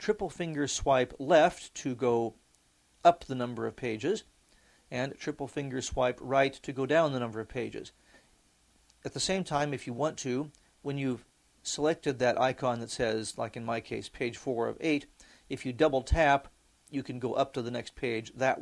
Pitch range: 115-145 Hz